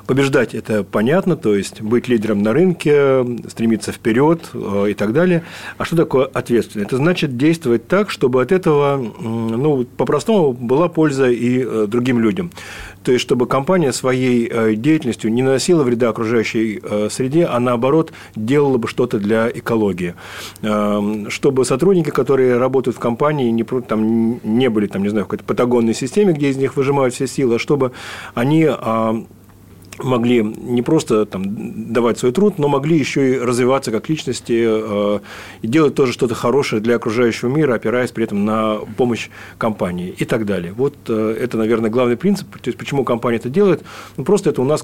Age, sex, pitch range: 40-59, male, 110-140 Hz